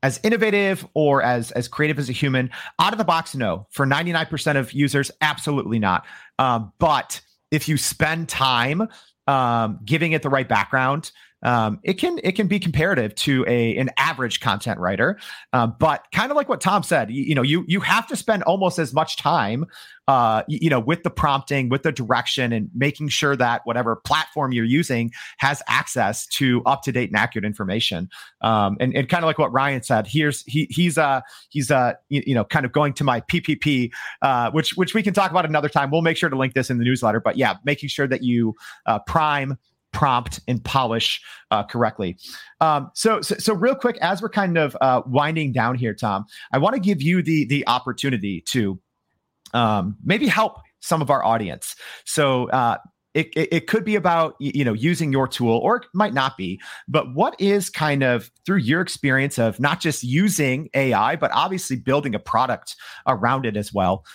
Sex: male